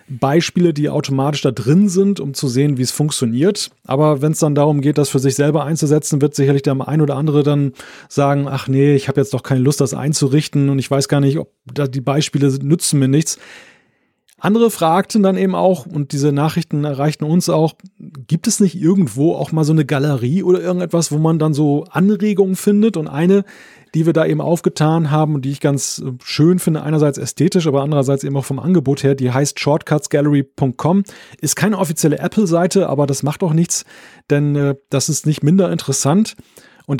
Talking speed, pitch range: 200 wpm, 140-170 Hz